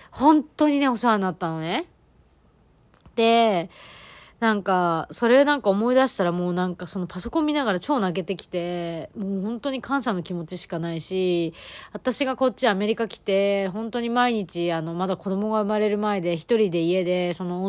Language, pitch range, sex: Japanese, 175-220 Hz, female